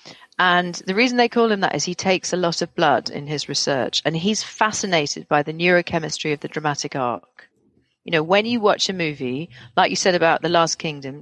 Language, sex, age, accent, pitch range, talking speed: English, female, 40-59, British, 150-190 Hz, 220 wpm